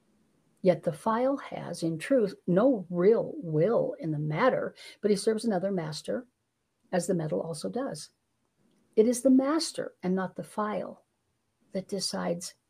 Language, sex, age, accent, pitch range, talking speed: English, female, 60-79, American, 175-225 Hz, 150 wpm